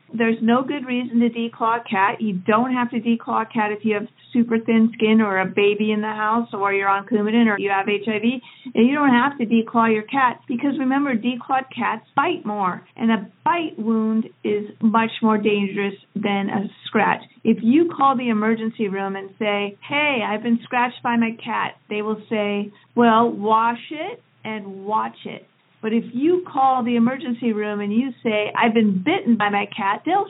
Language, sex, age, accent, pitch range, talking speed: English, female, 50-69, American, 210-250 Hz, 200 wpm